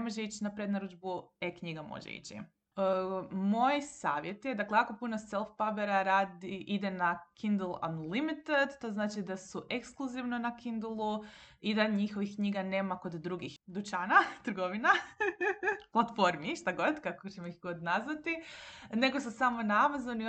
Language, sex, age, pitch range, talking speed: Croatian, female, 20-39, 180-230 Hz, 150 wpm